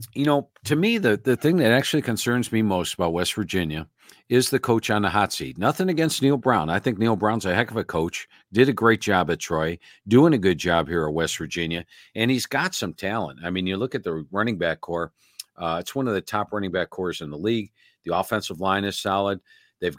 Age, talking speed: 50-69, 245 wpm